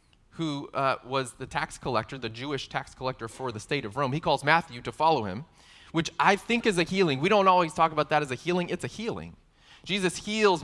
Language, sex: English, male